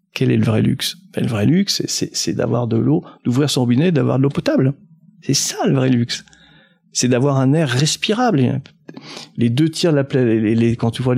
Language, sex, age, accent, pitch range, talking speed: French, male, 50-69, French, 115-140 Hz, 220 wpm